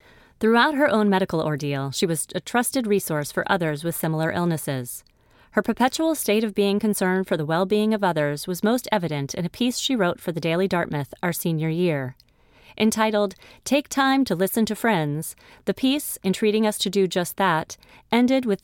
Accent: American